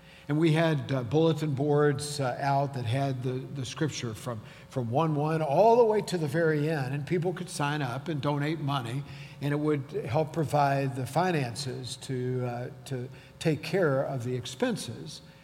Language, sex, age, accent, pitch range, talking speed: English, male, 50-69, American, 135-165 Hz, 175 wpm